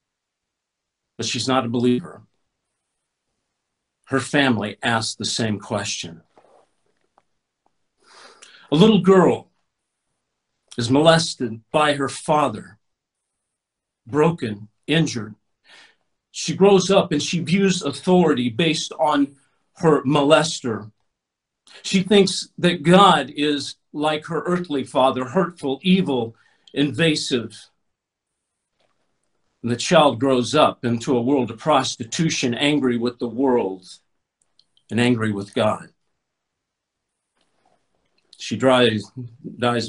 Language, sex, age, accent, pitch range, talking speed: English, male, 50-69, American, 115-150 Hz, 95 wpm